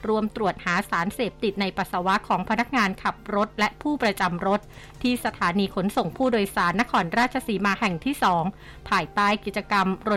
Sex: female